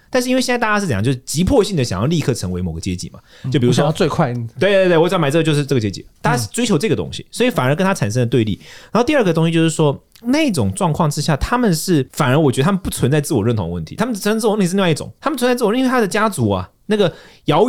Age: 30-49